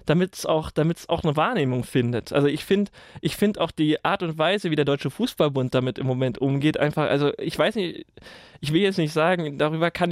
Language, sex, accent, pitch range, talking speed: German, male, German, 145-175 Hz, 220 wpm